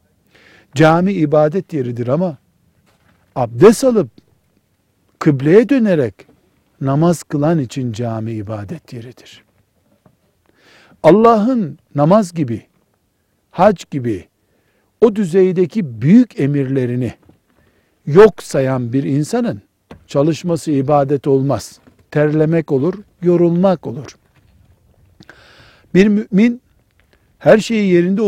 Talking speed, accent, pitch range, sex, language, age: 85 wpm, native, 130-175 Hz, male, Turkish, 60-79